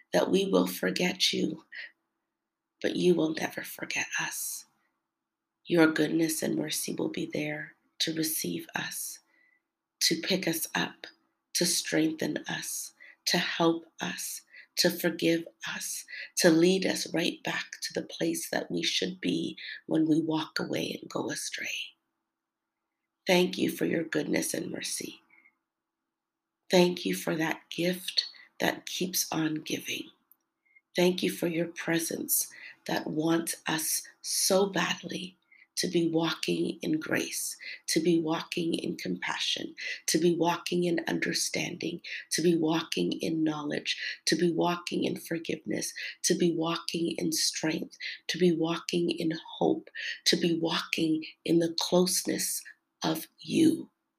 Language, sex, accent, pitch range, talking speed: English, female, American, 165-180 Hz, 135 wpm